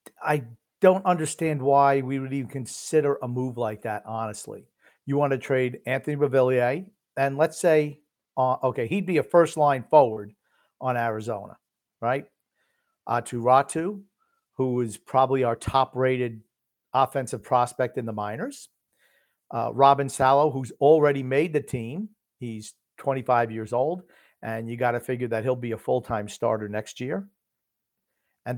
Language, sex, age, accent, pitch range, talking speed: English, male, 50-69, American, 115-150 Hz, 155 wpm